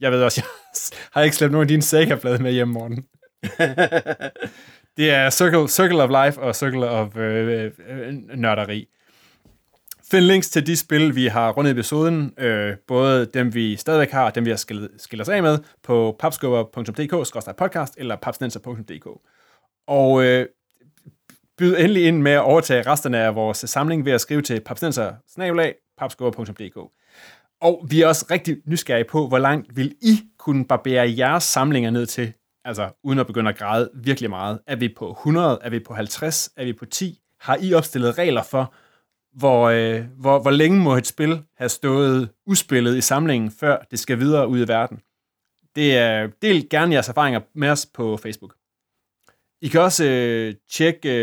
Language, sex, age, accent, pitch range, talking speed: Danish, male, 20-39, native, 120-155 Hz, 170 wpm